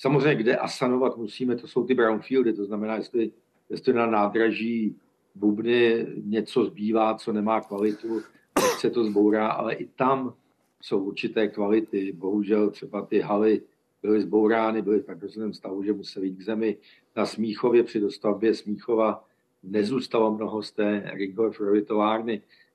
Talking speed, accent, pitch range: 145 wpm, native, 105-115 Hz